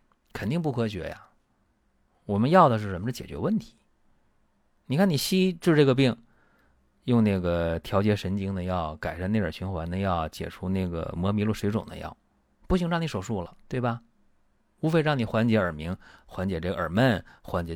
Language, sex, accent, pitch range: Chinese, male, native, 90-130 Hz